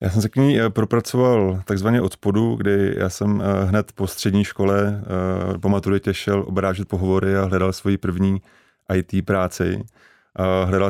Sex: male